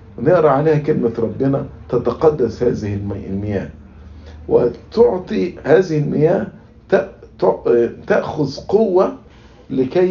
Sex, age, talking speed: male, 50-69, 75 wpm